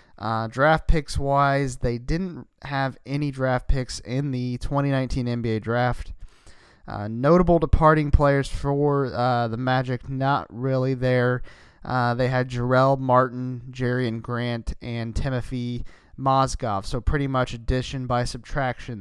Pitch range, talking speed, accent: 125-145 Hz, 135 wpm, American